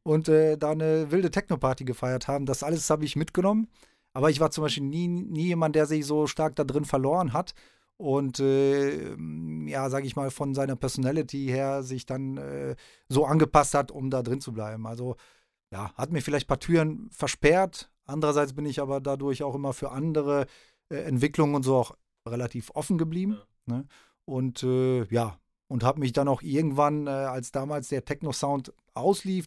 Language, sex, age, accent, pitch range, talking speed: German, male, 30-49, German, 130-155 Hz, 185 wpm